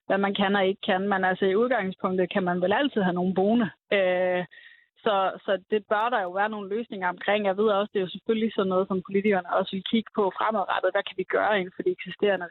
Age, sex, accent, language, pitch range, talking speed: 20-39, female, native, Danish, 185-225 Hz, 250 wpm